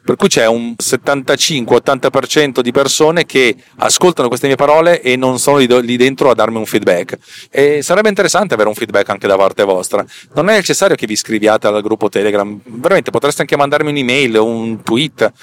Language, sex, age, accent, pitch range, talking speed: Italian, male, 40-59, native, 115-145 Hz, 185 wpm